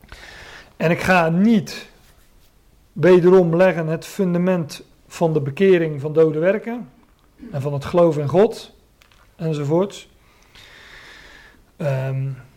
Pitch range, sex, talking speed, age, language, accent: 140-170 Hz, male, 105 wpm, 40-59, Dutch, Dutch